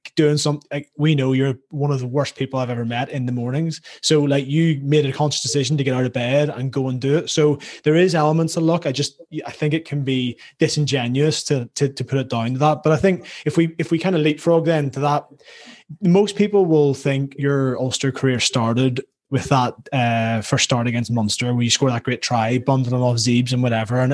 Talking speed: 240 wpm